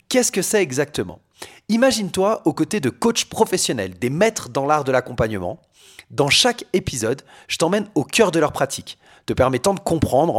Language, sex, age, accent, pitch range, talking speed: French, male, 30-49, French, 130-180 Hz, 175 wpm